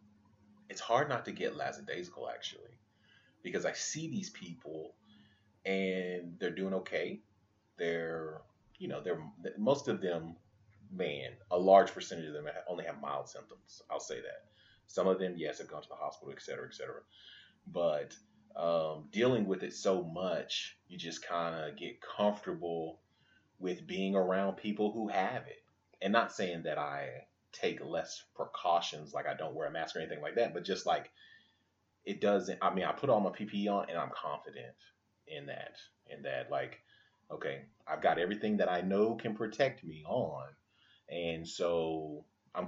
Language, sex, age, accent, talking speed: English, male, 30-49, American, 170 wpm